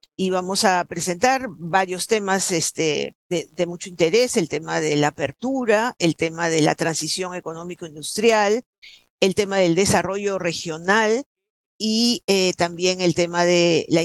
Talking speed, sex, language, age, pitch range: 145 wpm, female, Spanish, 50-69, 175-215 Hz